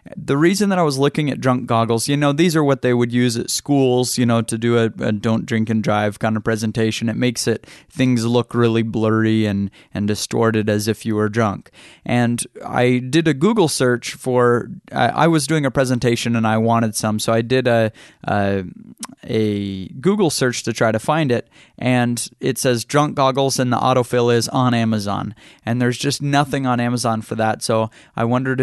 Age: 30-49